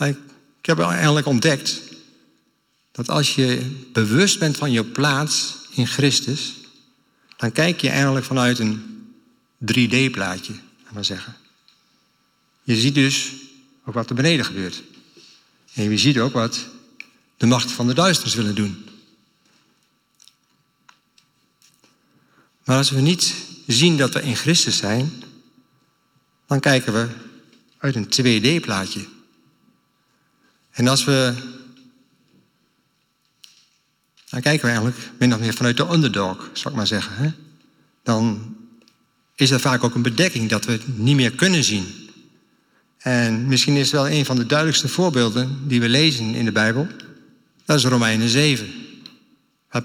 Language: Dutch